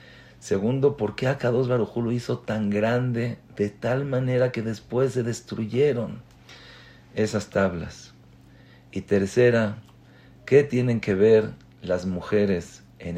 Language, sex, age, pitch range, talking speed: English, male, 50-69, 100-130 Hz, 125 wpm